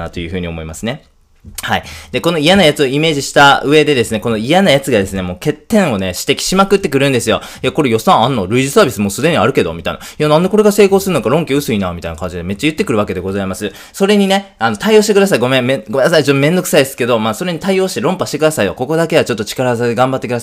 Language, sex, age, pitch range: Japanese, male, 20-39, 110-175 Hz